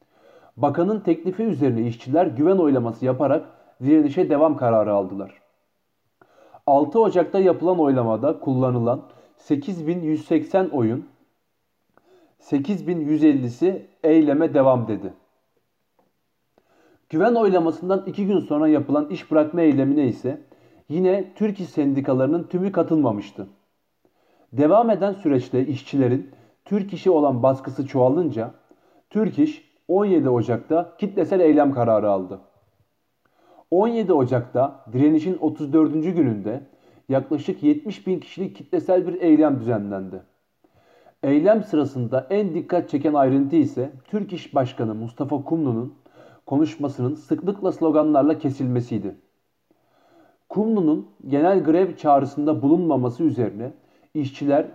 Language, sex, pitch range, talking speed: Turkish, male, 130-180 Hz, 100 wpm